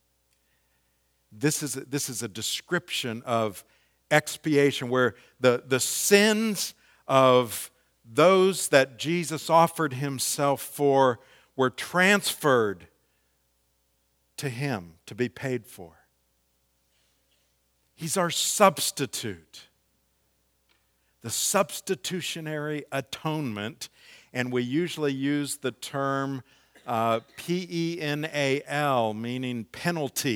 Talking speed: 85 wpm